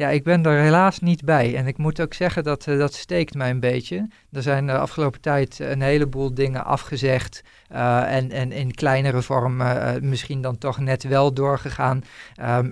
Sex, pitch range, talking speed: male, 135-155 Hz, 200 wpm